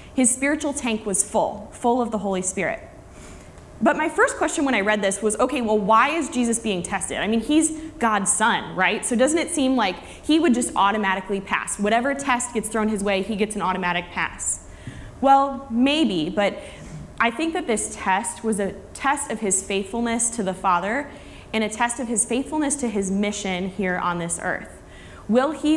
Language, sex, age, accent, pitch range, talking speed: English, female, 20-39, American, 195-260 Hz, 200 wpm